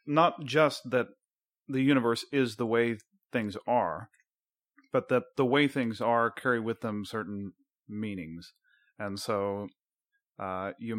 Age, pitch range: 30-49, 110-140 Hz